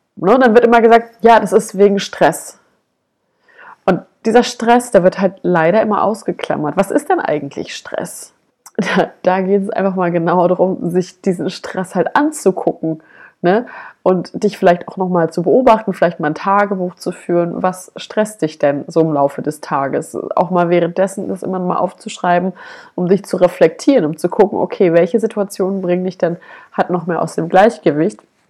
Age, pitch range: 30-49, 170-205 Hz